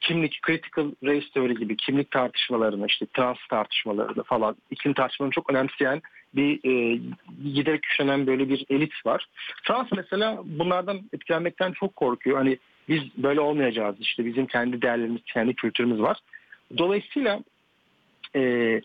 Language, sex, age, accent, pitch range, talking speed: Turkish, male, 50-69, native, 135-175 Hz, 135 wpm